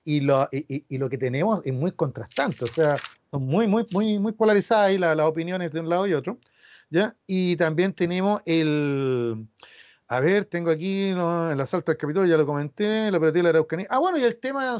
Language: Spanish